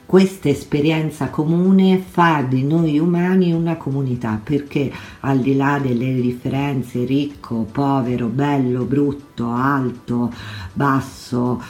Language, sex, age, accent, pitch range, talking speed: Italian, female, 50-69, native, 125-155 Hz, 110 wpm